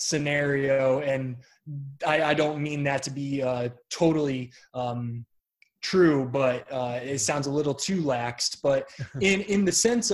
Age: 20-39